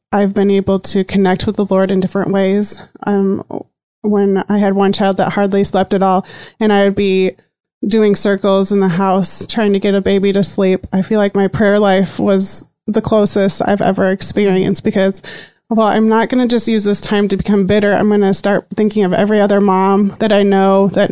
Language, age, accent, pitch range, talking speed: English, 20-39, American, 195-210 Hz, 215 wpm